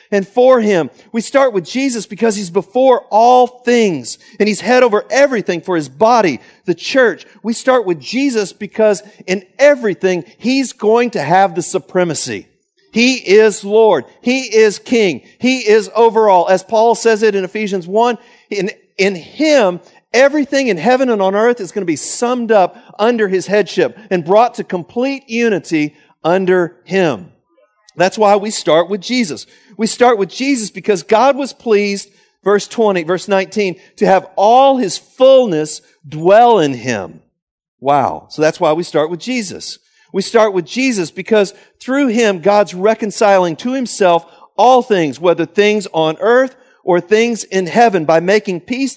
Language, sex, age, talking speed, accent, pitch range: English, male, 50-69, 165 wpm, American, 185-235 Hz